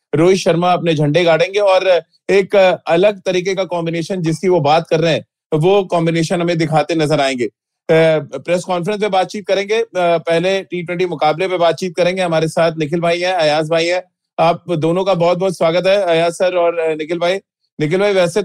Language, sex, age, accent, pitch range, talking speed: Hindi, male, 30-49, native, 165-195 Hz, 185 wpm